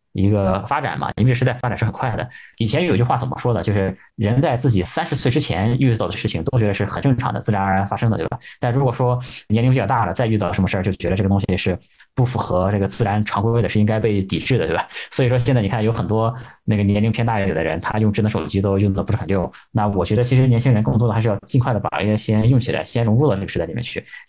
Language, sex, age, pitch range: Chinese, male, 20-39, 95-120 Hz